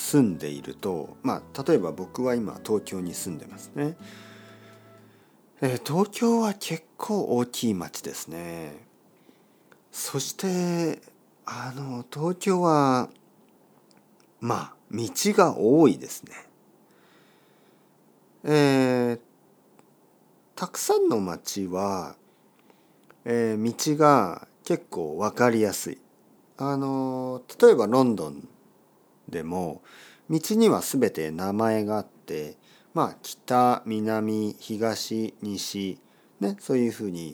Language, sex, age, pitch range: Japanese, male, 50-69, 95-150 Hz